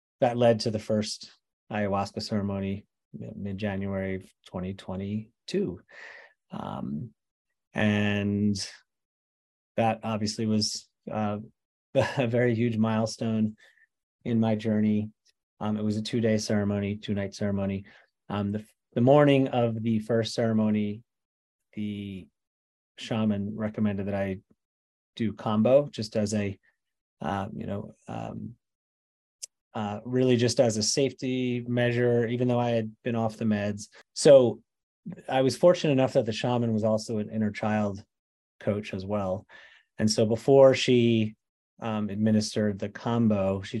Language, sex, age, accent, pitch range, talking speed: English, male, 30-49, American, 105-115 Hz, 125 wpm